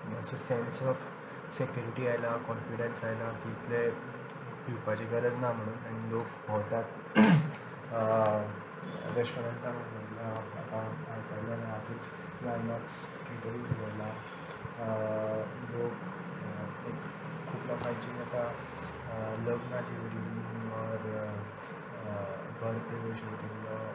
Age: 20-39